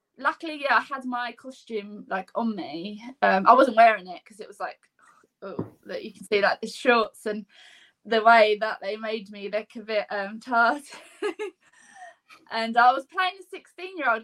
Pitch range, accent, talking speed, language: 220-285 Hz, British, 190 wpm, English